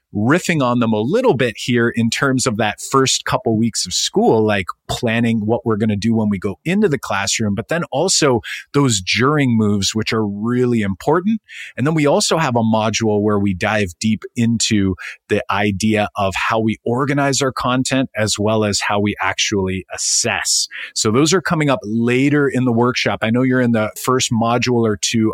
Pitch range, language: 110-135 Hz, English